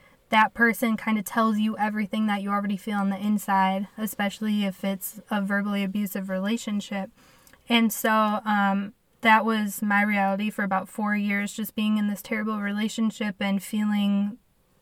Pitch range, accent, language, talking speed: 200-220 Hz, American, English, 160 wpm